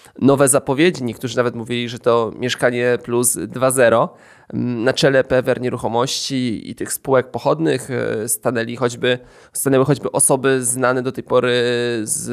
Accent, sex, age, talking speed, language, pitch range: native, male, 20-39, 125 wpm, Polish, 115-130 Hz